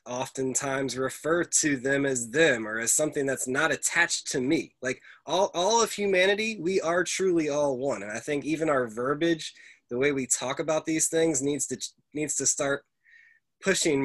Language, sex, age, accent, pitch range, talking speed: English, male, 20-39, American, 125-160 Hz, 185 wpm